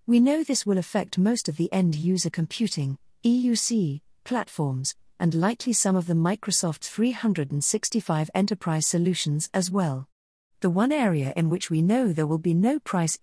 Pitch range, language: 155-215 Hz, English